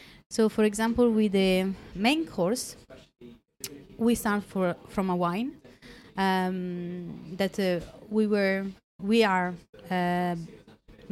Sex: female